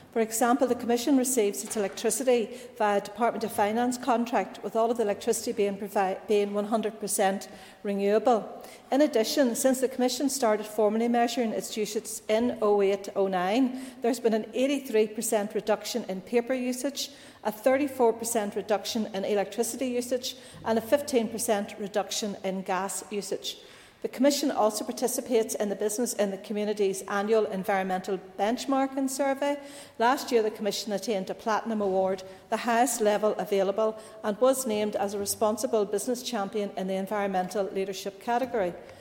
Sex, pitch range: female, 200-245 Hz